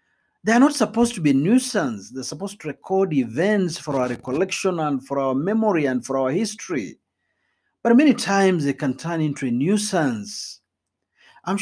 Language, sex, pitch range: Swahili, male, 140-215 Hz